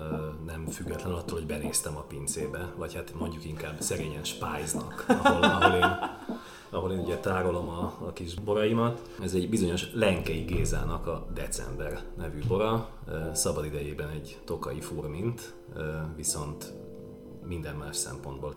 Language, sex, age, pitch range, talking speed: Hungarian, male, 30-49, 75-100 Hz, 135 wpm